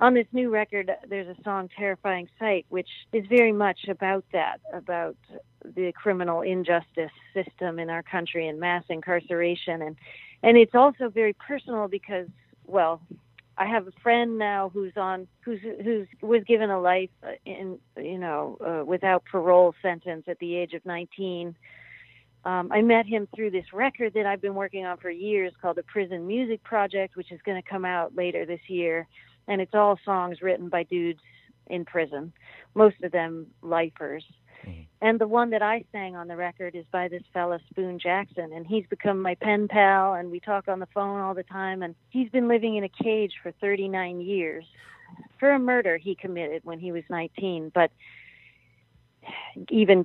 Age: 40-59